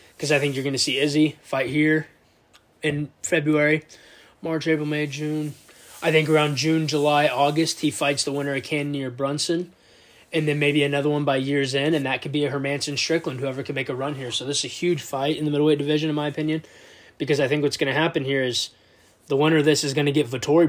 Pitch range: 135-150 Hz